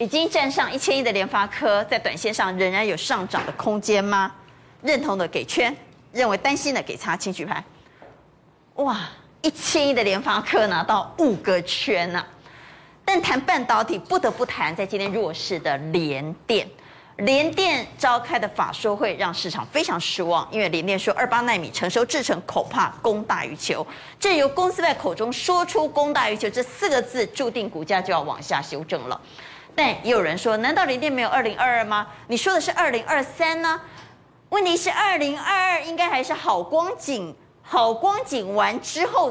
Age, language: 30-49, Chinese